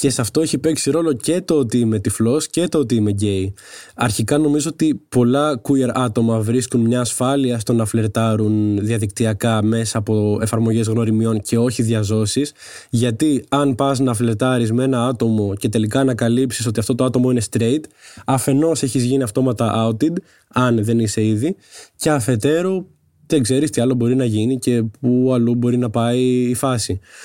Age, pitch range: 20-39, 115-150 Hz